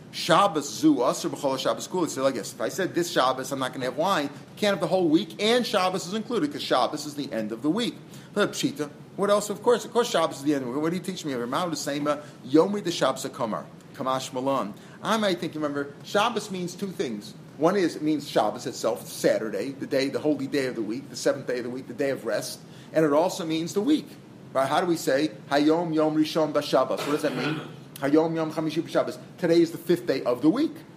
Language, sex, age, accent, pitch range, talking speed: English, male, 40-59, American, 145-195 Hz, 235 wpm